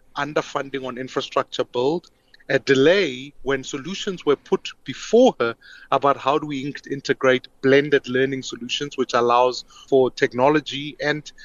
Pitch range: 130-165 Hz